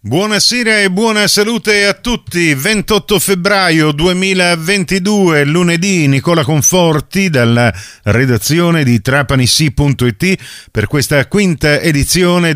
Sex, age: male, 50-69